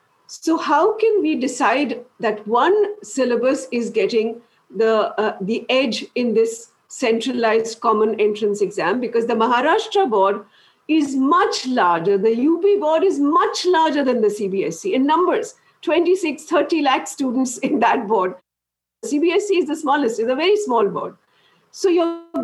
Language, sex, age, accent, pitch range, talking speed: English, female, 50-69, Indian, 240-350 Hz, 150 wpm